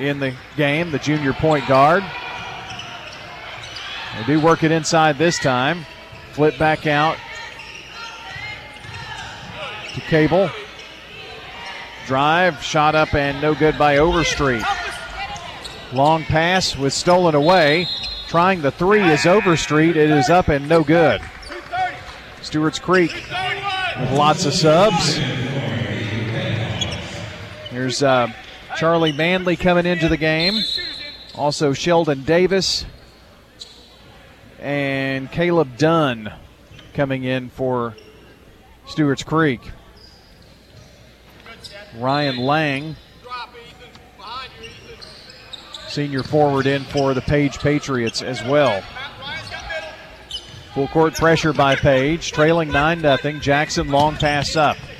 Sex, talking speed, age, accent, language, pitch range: male, 100 wpm, 40-59, American, English, 135-165 Hz